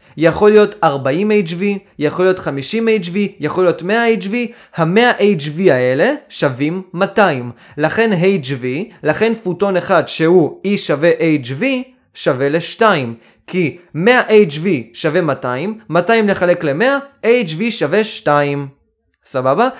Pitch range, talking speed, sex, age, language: 150-225 Hz, 120 wpm, male, 20-39, Hebrew